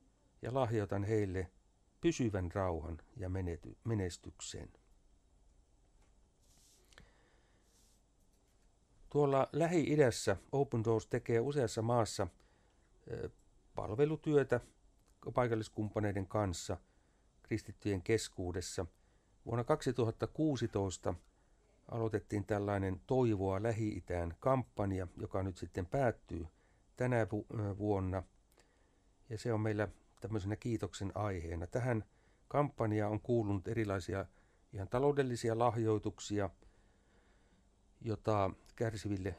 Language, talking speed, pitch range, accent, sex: Finnish, 75 wpm, 95-115 Hz, native, male